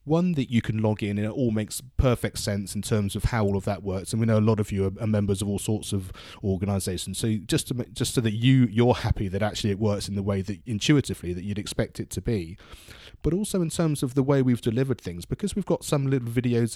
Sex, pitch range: male, 105-125 Hz